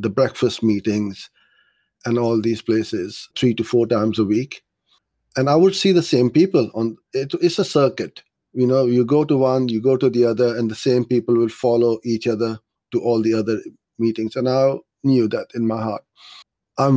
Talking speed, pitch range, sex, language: 200 wpm, 110-130 Hz, male, English